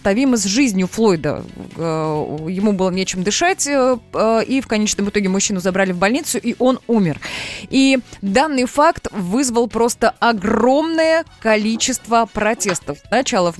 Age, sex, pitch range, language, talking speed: 20-39, female, 195-245 Hz, Russian, 125 wpm